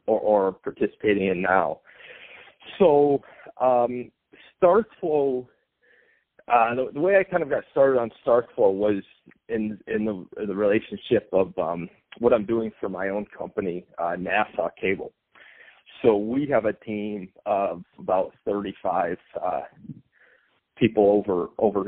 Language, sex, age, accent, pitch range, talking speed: English, male, 40-59, American, 95-120 Hz, 135 wpm